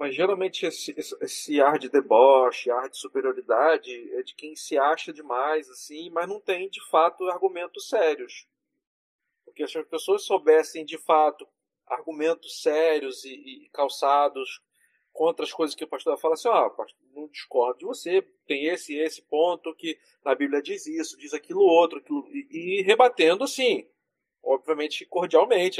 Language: Portuguese